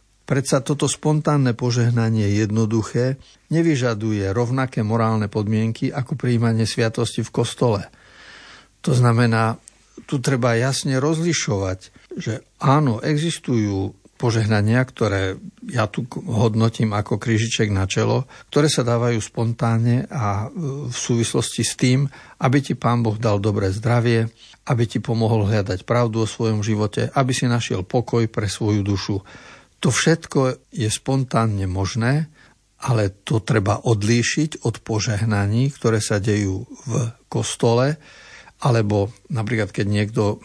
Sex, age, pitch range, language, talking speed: male, 50-69, 110-130 Hz, Slovak, 125 wpm